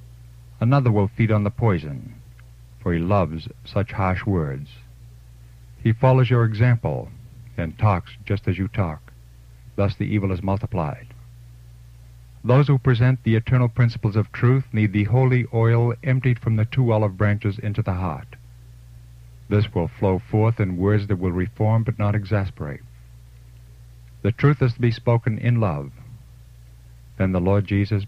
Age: 60-79